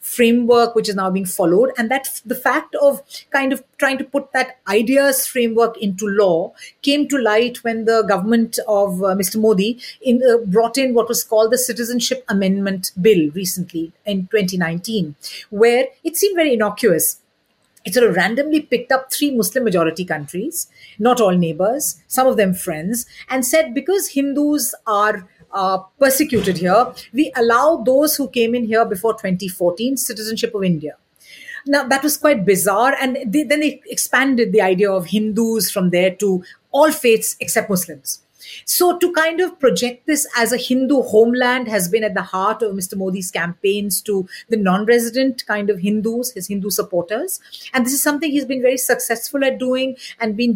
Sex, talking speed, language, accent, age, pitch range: female, 175 wpm, Swedish, Indian, 50-69, 205-260 Hz